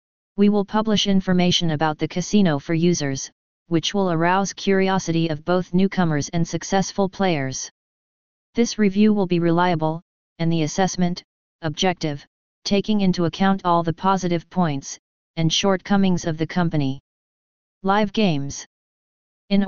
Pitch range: 165-195 Hz